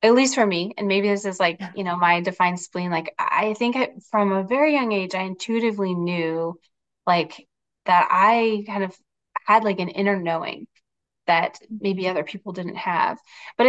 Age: 20-39